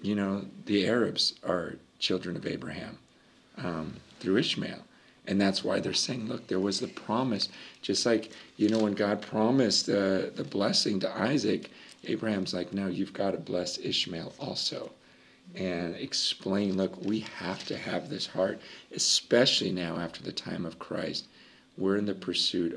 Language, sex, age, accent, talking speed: English, male, 40-59, American, 165 wpm